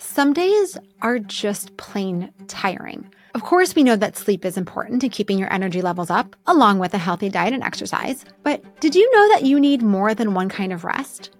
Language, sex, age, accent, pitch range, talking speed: English, female, 20-39, American, 195-260 Hz, 210 wpm